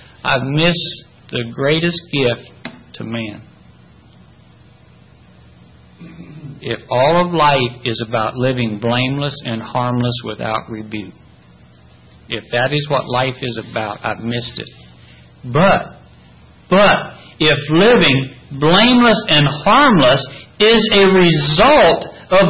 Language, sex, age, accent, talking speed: English, male, 60-79, American, 105 wpm